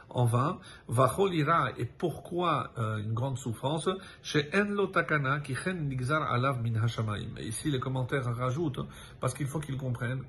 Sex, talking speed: male, 145 wpm